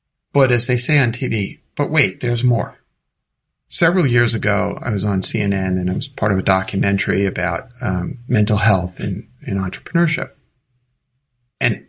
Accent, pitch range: American, 100-145 Hz